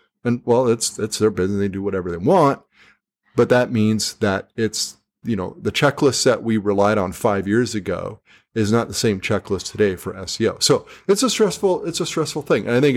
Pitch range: 100-130 Hz